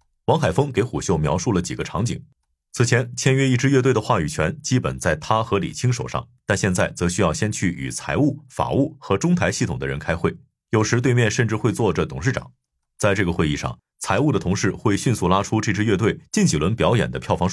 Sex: male